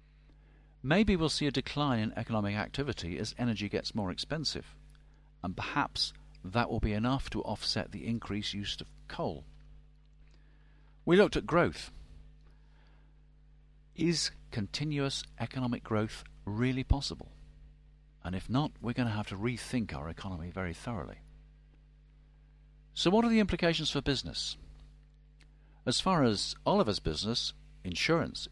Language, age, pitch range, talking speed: English, 50-69, 110-150 Hz, 130 wpm